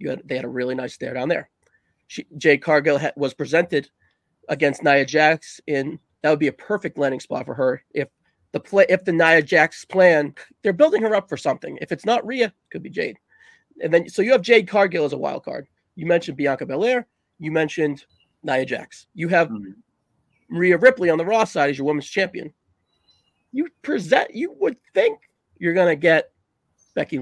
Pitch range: 160-245 Hz